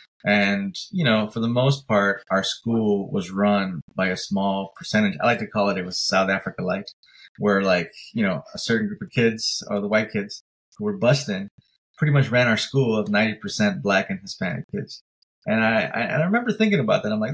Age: 20-39